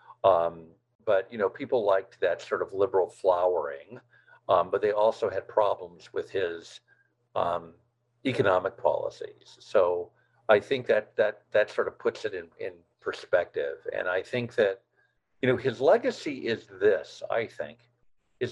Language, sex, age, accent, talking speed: English, male, 50-69, American, 155 wpm